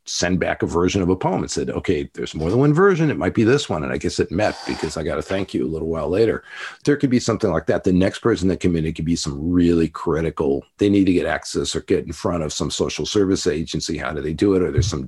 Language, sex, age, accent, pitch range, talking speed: English, male, 50-69, American, 85-120 Hz, 300 wpm